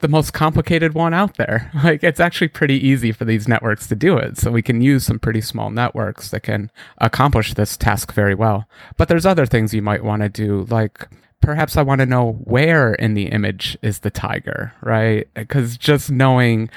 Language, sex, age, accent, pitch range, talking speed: English, male, 30-49, American, 110-135 Hz, 210 wpm